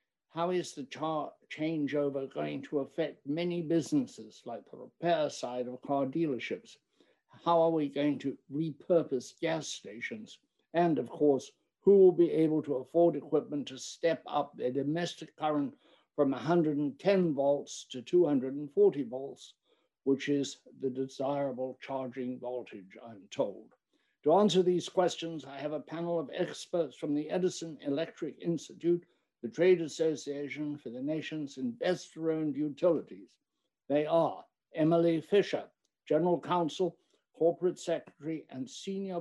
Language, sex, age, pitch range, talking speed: English, male, 60-79, 140-170 Hz, 135 wpm